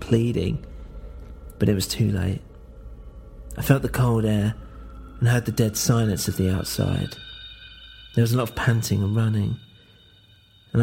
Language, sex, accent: English, male, British